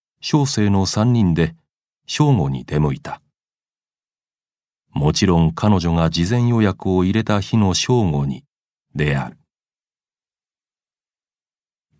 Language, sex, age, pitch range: Japanese, male, 40-59, 80-110 Hz